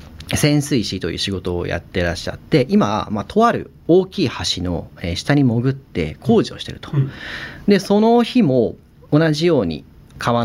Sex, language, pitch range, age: male, Japanese, 90-155 Hz, 40-59